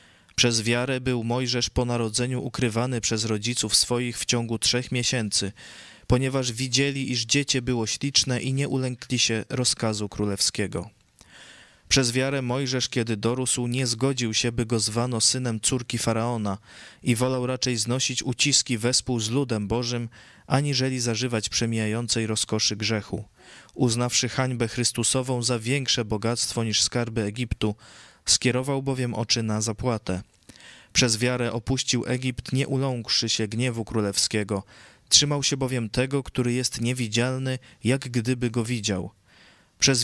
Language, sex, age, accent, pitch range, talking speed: Polish, male, 20-39, native, 110-130 Hz, 135 wpm